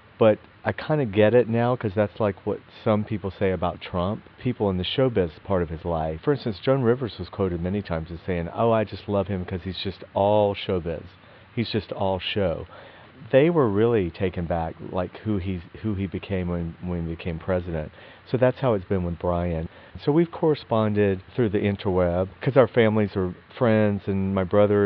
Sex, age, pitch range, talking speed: male, 40-59, 90-110 Hz, 205 wpm